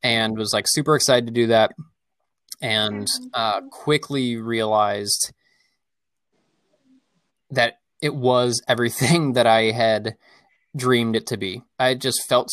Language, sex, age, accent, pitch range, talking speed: English, male, 20-39, American, 115-135 Hz, 125 wpm